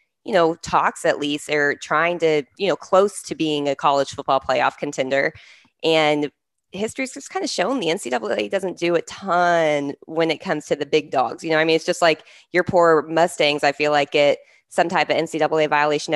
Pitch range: 145-170 Hz